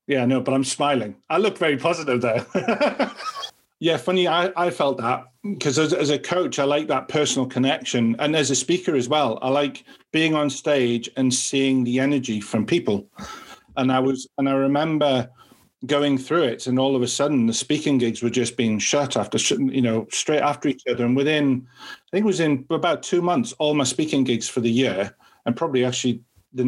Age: 40-59